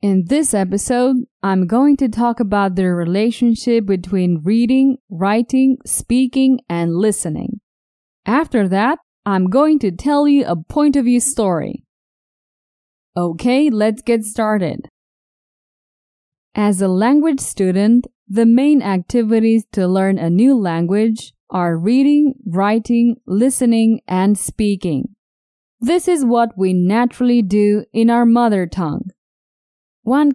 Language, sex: English, female